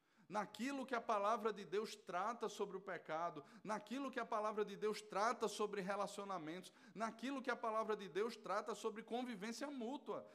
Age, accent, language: 20-39, Brazilian, Portuguese